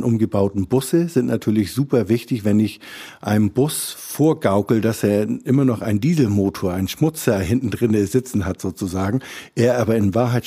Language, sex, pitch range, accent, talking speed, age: German, male, 100-120 Hz, German, 160 wpm, 50-69